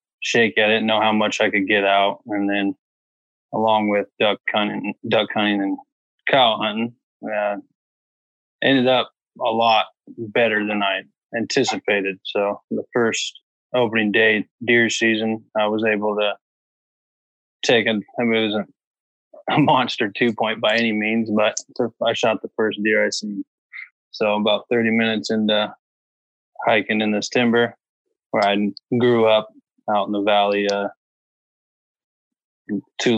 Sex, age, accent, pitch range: male, 20-39, American, 105-115 Hz